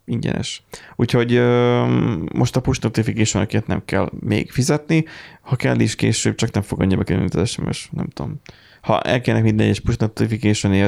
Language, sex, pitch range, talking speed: Hungarian, male, 105-130 Hz, 160 wpm